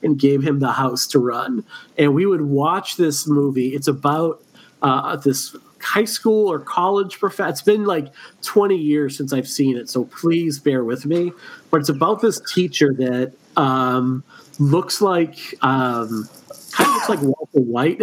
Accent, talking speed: American, 175 wpm